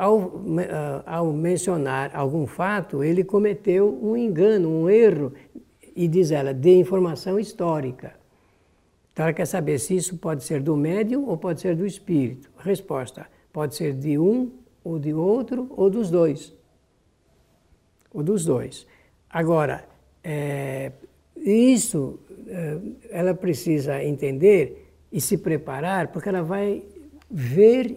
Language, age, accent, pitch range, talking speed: Portuguese, 60-79, Brazilian, 150-205 Hz, 130 wpm